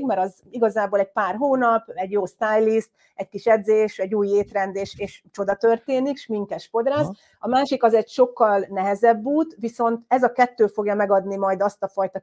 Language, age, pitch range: Hungarian, 30-49, 195-235 Hz